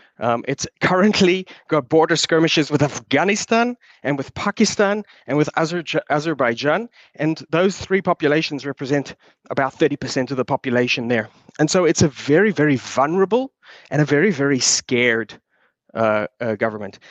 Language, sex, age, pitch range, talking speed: English, male, 30-49, 135-190 Hz, 140 wpm